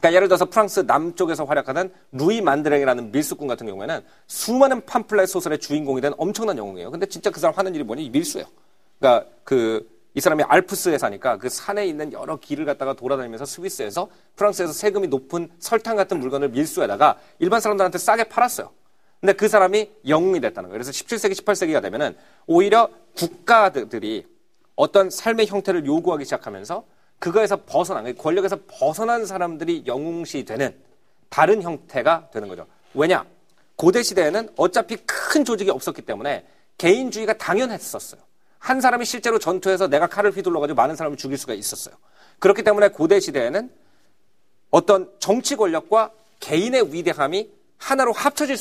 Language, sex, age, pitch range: Korean, male, 40-59, 170-240 Hz